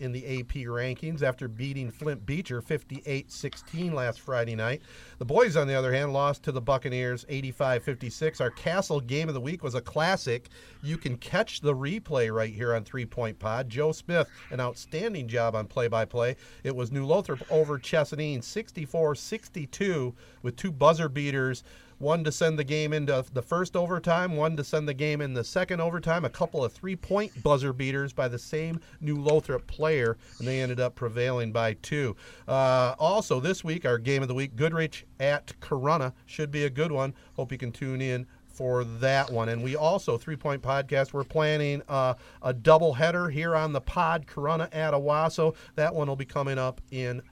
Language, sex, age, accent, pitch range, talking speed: English, male, 40-59, American, 125-155 Hz, 185 wpm